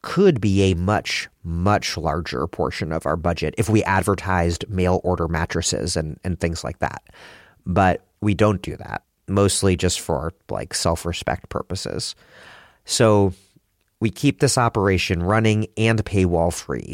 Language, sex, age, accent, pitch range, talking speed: English, male, 30-49, American, 85-105 Hz, 145 wpm